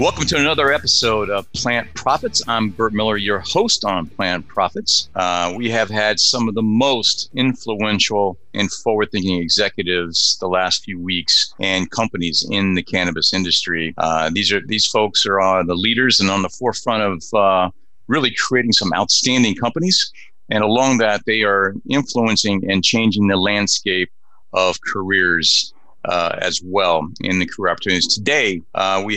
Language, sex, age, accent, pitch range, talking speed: English, male, 40-59, American, 90-110 Hz, 165 wpm